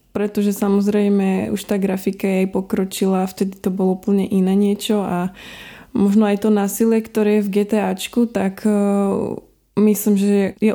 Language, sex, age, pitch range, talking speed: Slovak, female, 20-39, 195-220 Hz, 160 wpm